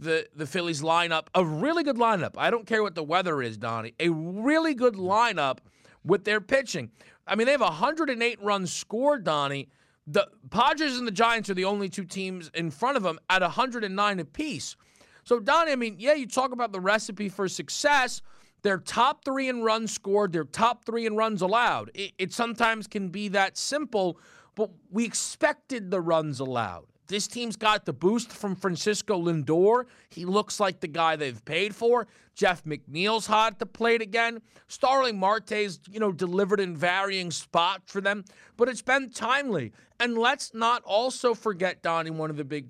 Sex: male